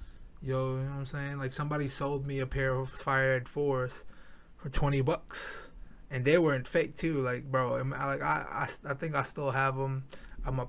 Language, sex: English, male